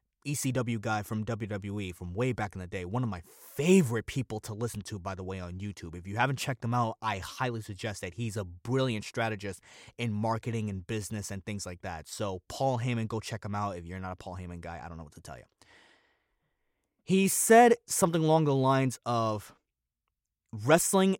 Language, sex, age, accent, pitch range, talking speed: English, male, 20-39, American, 105-145 Hz, 210 wpm